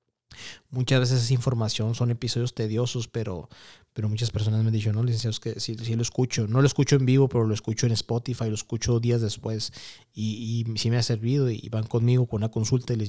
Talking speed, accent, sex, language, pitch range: 235 wpm, Mexican, male, Spanish, 110-130 Hz